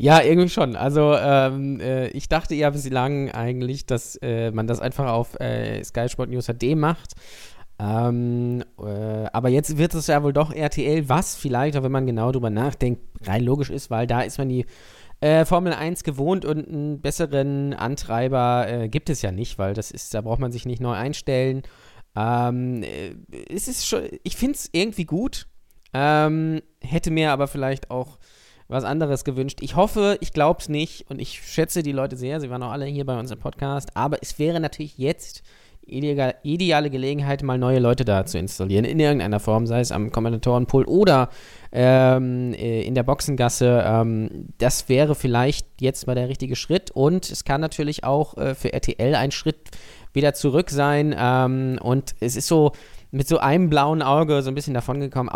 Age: 20-39